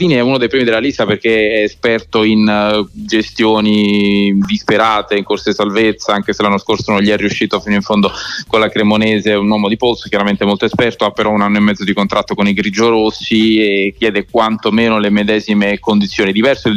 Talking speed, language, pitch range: 210 wpm, Italian, 105-120 Hz